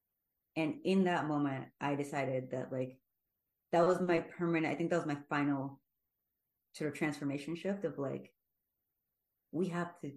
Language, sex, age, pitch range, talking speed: English, female, 30-49, 135-160 Hz, 160 wpm